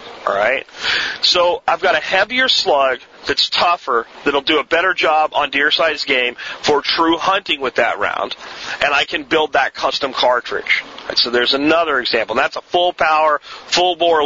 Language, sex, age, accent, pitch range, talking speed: English, male, 40-59, American, 145-175 Hz, 180 wpm